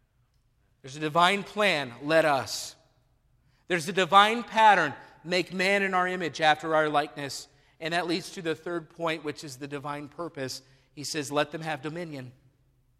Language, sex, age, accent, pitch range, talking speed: English, male, 40-59, American, 160-215 Hz, 165 wpm